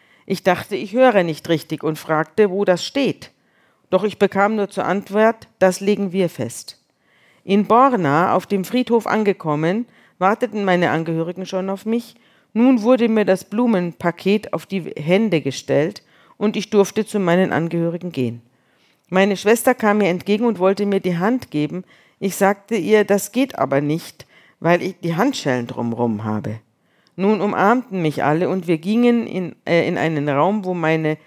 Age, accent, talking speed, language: 50-69, German, 165 wpm, German